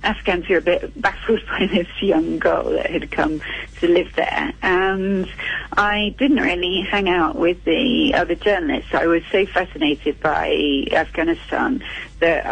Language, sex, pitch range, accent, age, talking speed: English, female, 160-265 Hz, British, 40-59, 155 wpm